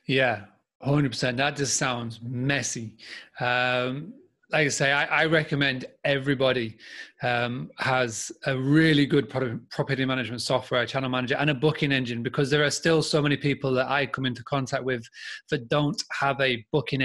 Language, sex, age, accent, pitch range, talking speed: English, male, 30-49, British, 125-145 Hz, 160 wpm